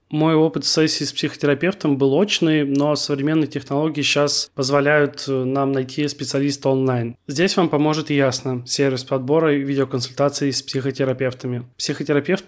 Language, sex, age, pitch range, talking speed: Russian, male, 20-39, 130-150 Hz, 130 wpm